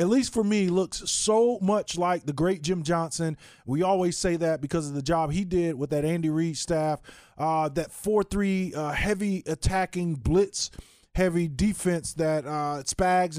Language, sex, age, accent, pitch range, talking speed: English, male, 20-39, American, 160-190 Hz, 175 wpm